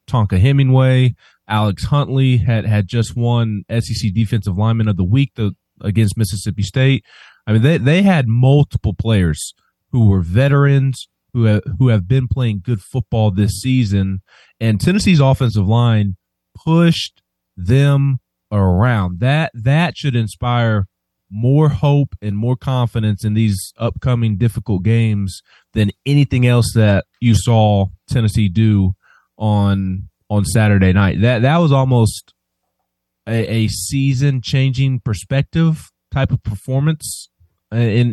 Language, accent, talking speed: English, American, 130 wpm